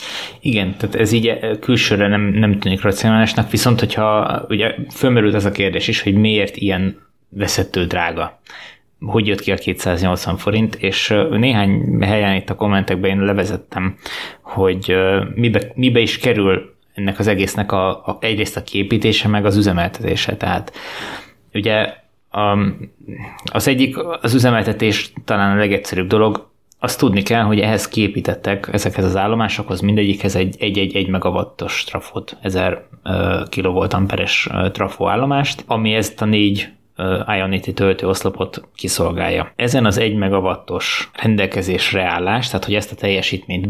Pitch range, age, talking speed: 95-110 Hz, 20-39, 135 wpm